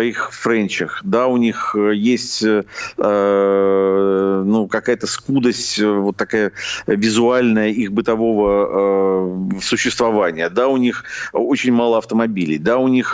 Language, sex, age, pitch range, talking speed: Russian, male, 50-69, 100-130 Hz, 120 wpm